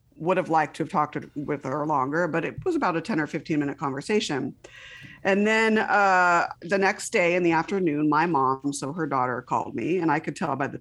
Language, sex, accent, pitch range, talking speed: English, female, American, 140-165 Hz, 230 wpm